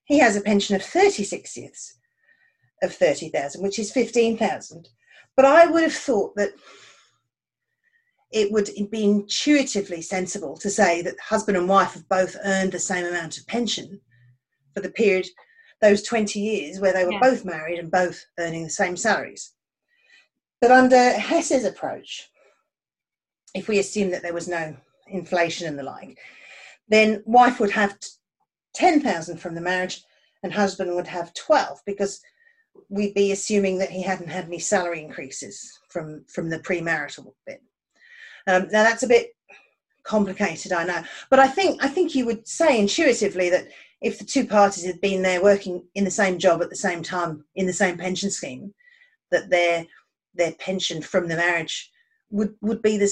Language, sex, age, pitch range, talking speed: English, female, 40-59, 180-230 Hz, 170 wpm